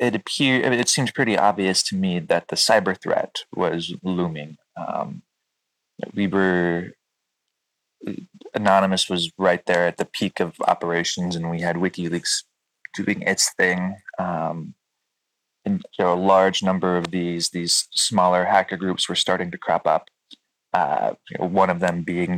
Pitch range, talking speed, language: 85-100 Hz, 145 wpm, English